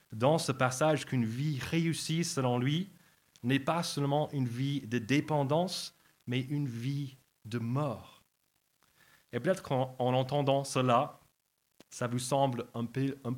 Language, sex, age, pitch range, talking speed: French, male, 30-49, 120-140 Hz, 145 wpm